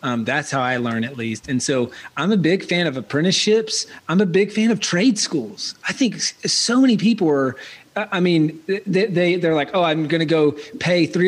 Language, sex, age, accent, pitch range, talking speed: English, male, 30-49, American, 140-175 Hz, 215 wpm